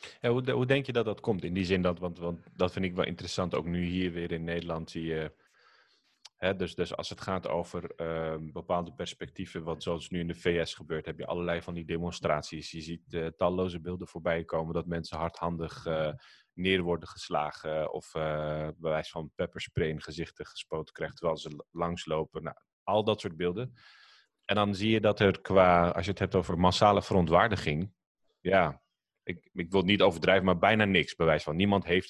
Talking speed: 205 wpm